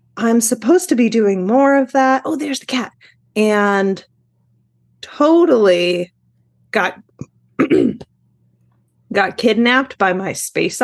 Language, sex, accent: English, female, American